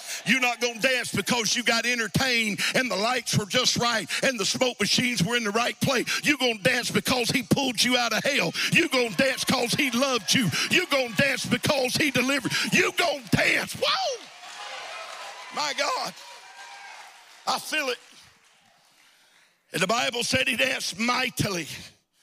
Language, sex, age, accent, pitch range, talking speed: English, male, 50-69, American, 205-245 Hz, 180 wpm